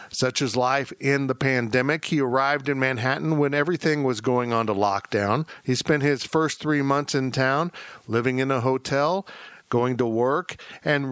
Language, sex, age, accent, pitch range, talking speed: English, male, 50-69, American, 120-160 Hz, 180 wpm